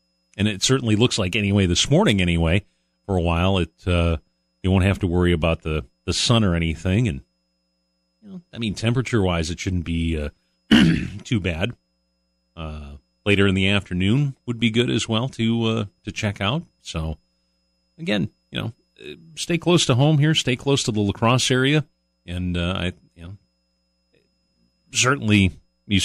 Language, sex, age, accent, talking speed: English, male, 40-59, American, 175 wpm